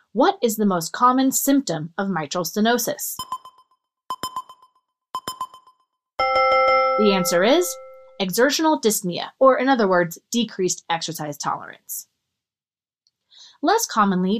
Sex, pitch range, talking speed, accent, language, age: female, 195-280 Hz, 95 wpm, American, English, 30-49